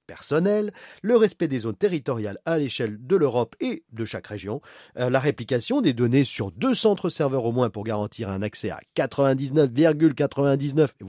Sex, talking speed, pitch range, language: male, 160 wpm, 115-185 Hz, French